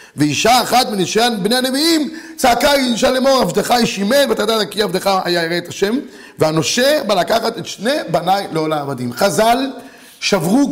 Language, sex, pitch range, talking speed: Hebrew, male, 210-275 Hz, 160 wpm